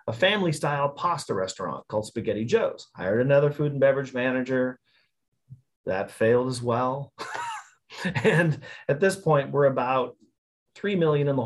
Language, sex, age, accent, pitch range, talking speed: English, male, 40-59, American, 130-170 Hz, 145 wpm